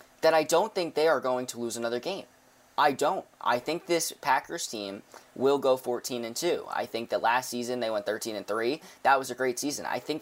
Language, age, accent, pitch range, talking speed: English, 20-39, American, 110-130 Hz, 225 wpm